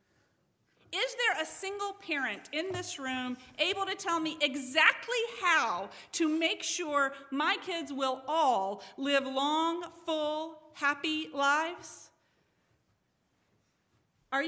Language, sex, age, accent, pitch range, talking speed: English, female, 40-59, American, 220-305 Hz, 110 wpm